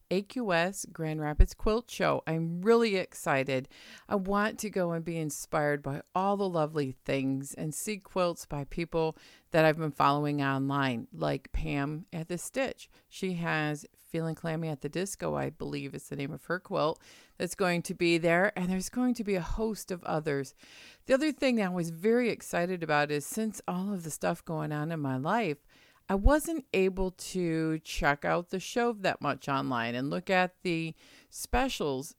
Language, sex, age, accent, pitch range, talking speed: English, female, 50-69, American, 140-190 Hz, 185 wpm